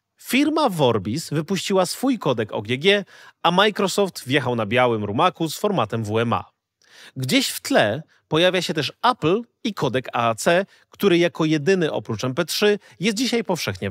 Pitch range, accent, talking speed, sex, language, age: 125-195 Hz, native, 140 wpm, male, Polish, 30-49